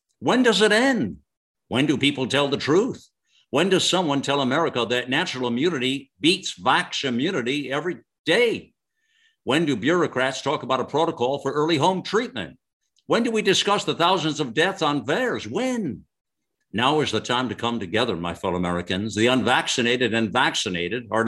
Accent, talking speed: American, 170 wpm